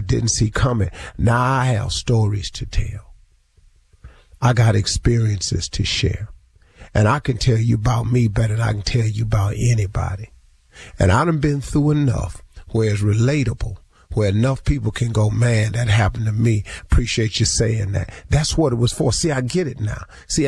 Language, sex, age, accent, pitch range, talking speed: English, male, 50-69, American, 105-125 Hz, 185 wpm